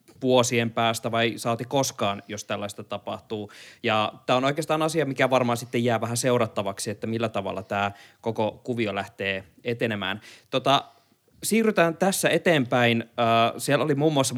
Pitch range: 115-135 Hz